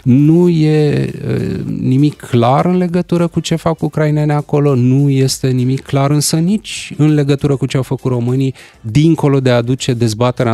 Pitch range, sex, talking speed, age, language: 110-150 Hz, male, 165 wpm, 30-49, Romanian